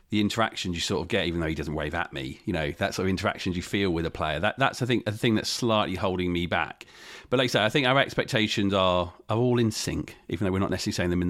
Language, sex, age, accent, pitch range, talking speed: English, male, 40-59, British, 95-125 Hz, 295 wpm